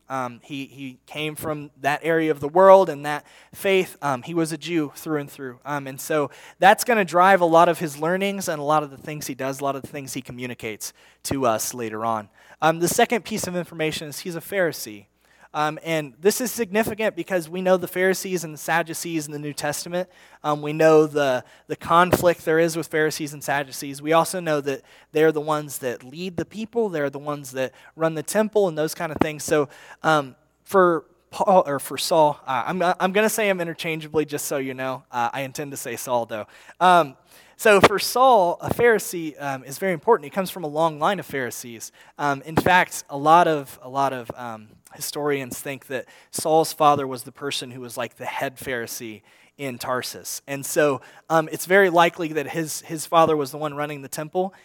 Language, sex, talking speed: English, male, 220 wpm